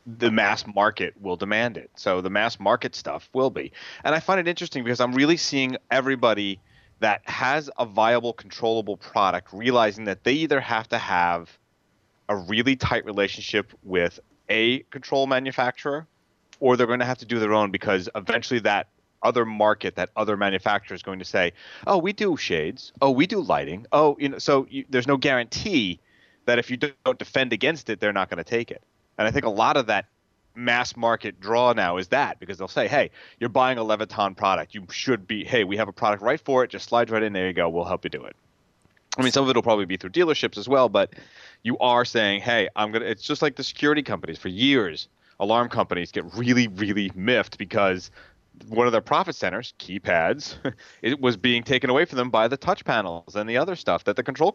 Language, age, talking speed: English, 30-49, 215 wpm